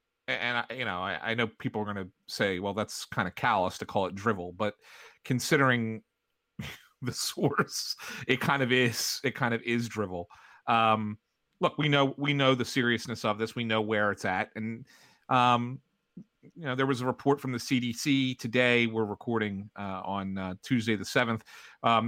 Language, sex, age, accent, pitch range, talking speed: English, male, 40-59, American, 110-140 Hz, 190 wpm